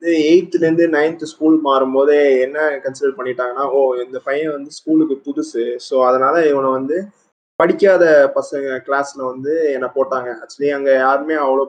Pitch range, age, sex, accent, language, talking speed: 140-170 Hz, 20-39, male, native, Tamil, 150 wpm